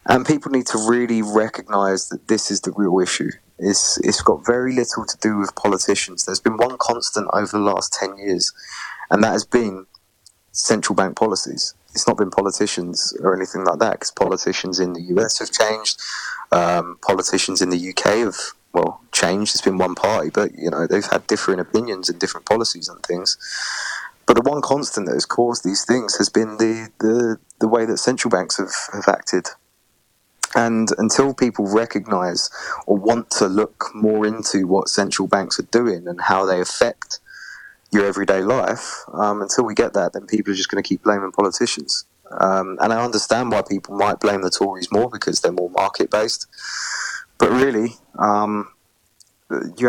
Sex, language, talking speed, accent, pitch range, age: male, English, 185 wpm, British, 95-110 Hz, 20-39